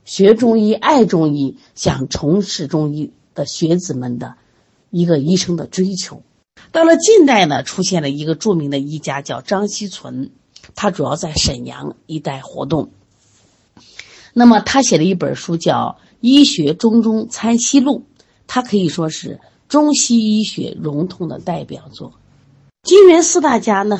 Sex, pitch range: female, 150-230 Hz